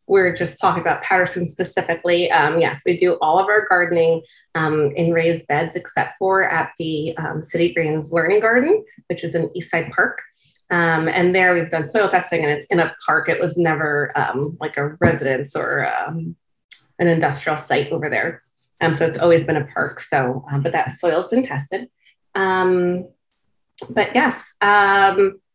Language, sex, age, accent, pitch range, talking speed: English, female, 30-49, American, 165-210 Hz, 185 wpm